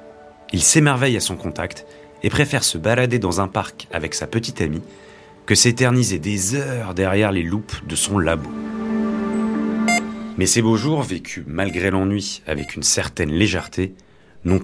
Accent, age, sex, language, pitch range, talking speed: French, 30-49, male, French, 90-120 Hz, 155 wpm